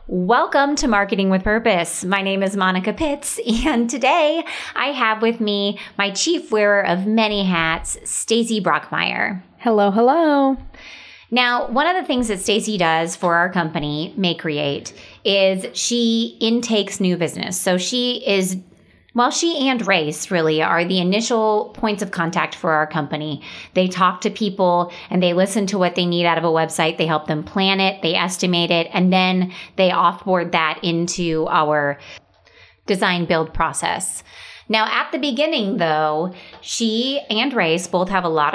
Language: English